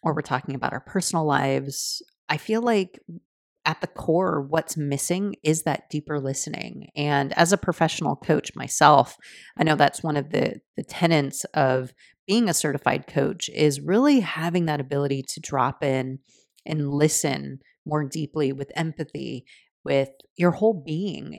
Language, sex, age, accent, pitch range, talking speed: English, female, 30-49, American, 140-170 Hz, 155 wpm